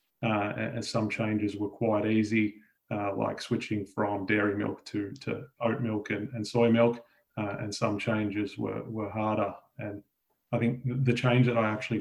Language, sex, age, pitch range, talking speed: English, male, 30-49, 105-115 Hz, 180 wpm